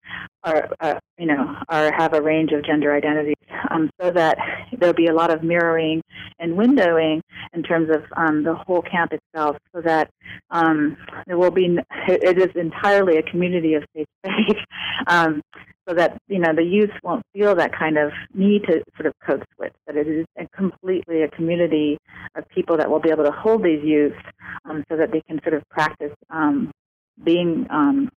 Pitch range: 155-180 Hz